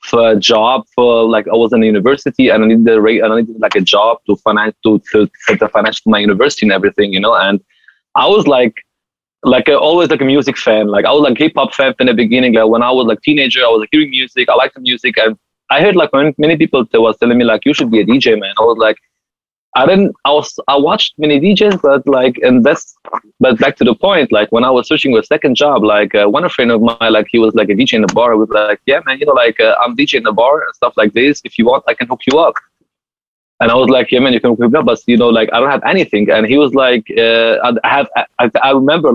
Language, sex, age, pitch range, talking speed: English, male, 20-39, 115-155 Hz, 290 wpm